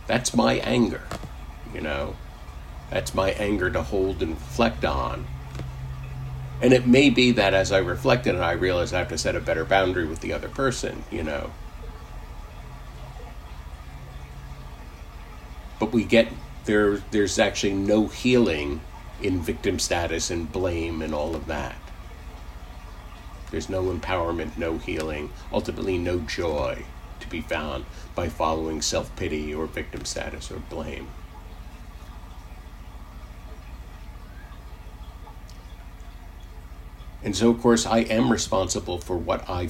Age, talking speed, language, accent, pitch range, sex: 50-69, 125 wpm, English, American, 70-95 Hz, male